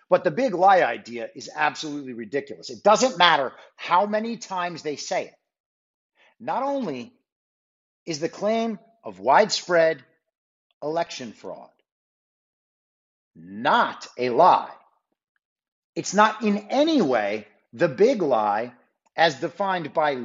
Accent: American